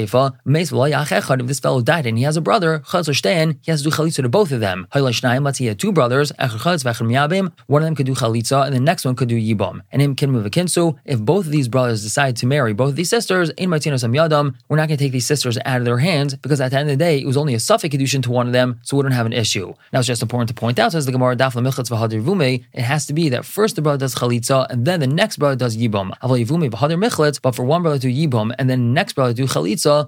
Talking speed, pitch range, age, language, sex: 240 wpm, 125-155 Hz, 20-39, English, male